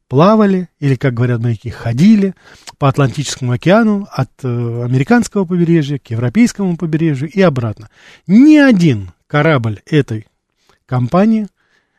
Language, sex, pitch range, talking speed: Russian, male, 135-195 Hz, 110 wpm